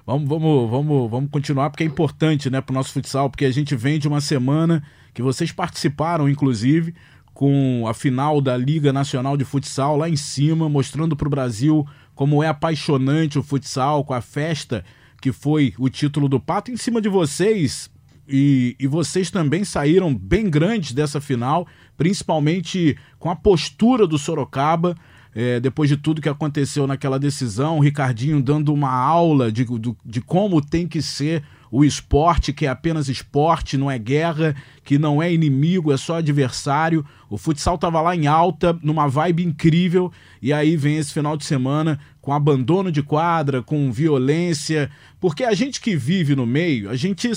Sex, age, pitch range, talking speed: male, 20-39, 140-175 Hz, 170 wpm